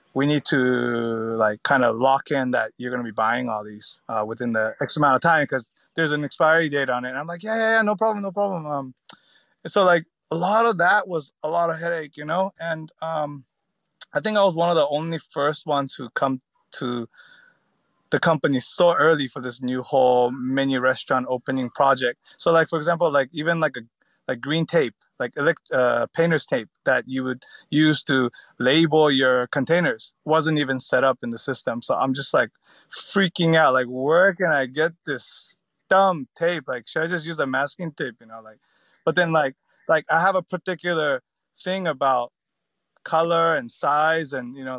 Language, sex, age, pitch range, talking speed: English, male, 30-49, 130-170 Hz, 205 wpm